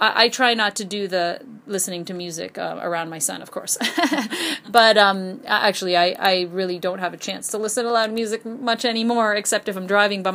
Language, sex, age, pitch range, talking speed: English, female, 30-49, 185-225 Hz, 215 wpm